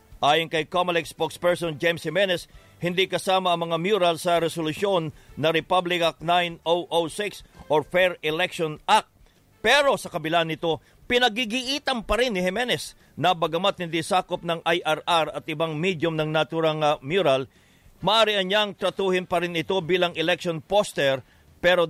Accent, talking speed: Filipino, 140 wpm